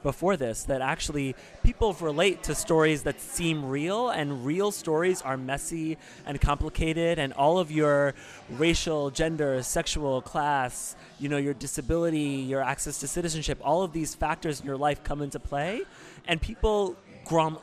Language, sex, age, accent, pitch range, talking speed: English, male, 30-49, American, 130-155 Hz, 160 wpm